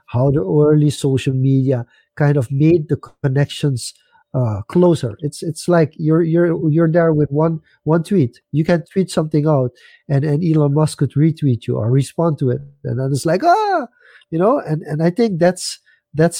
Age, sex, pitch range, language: 50-69, male, 135-170 Hz, English